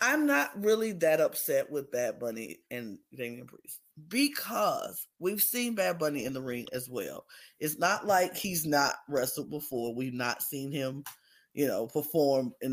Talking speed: 170 wpm